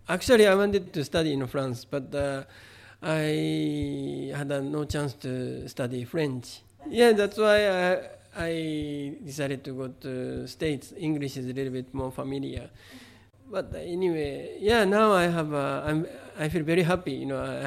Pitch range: 130-160 Hz